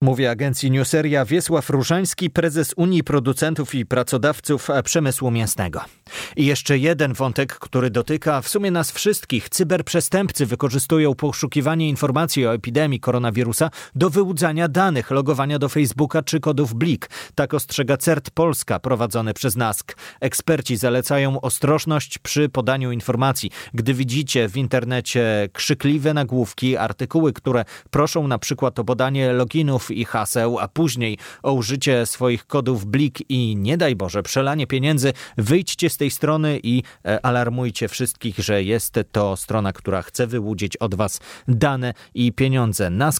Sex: male